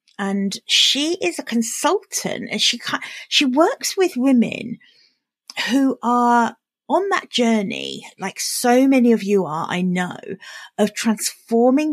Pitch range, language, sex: 190-240 Hz, English, female